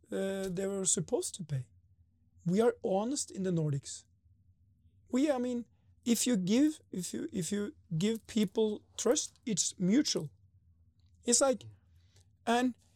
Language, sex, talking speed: Finnish, male, 140 wpm